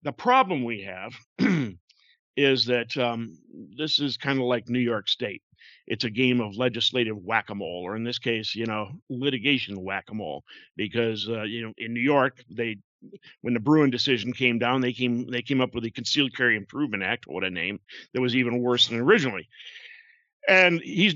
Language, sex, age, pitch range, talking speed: English, male, 50-69, 115-145 Hz, 185 wpm